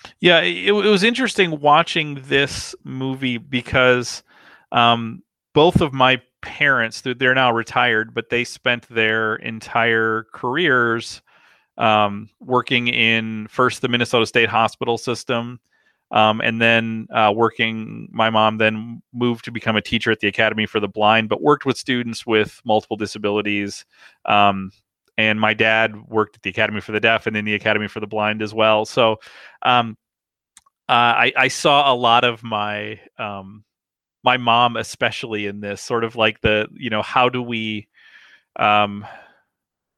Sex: male